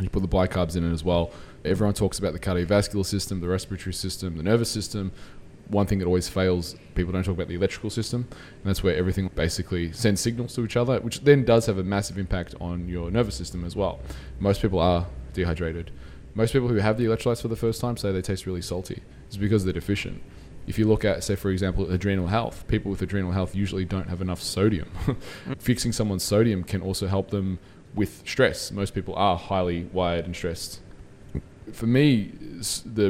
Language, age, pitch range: English, 20-39, 90-105 Hz